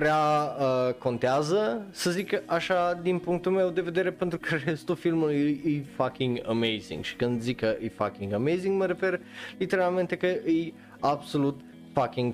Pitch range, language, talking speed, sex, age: 115-140 Hz, Romanian, 150 wpm, male, 20-39